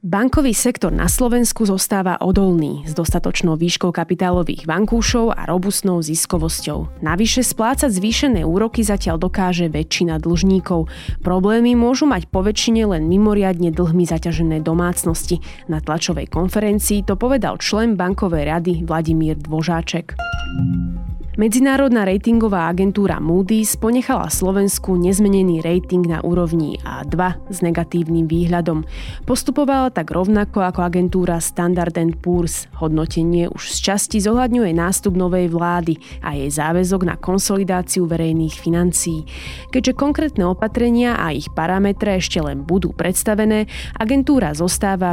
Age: 20-39